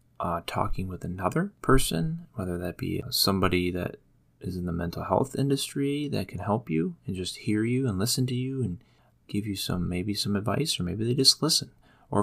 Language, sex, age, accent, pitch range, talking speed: English, male, 30-49, American, 90-125 Hz, 205 wpm